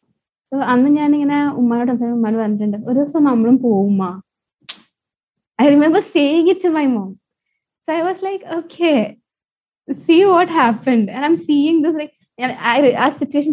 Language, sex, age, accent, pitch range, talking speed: Malayalam, female, 20-39, native, 205-270 Hz, 130 wpm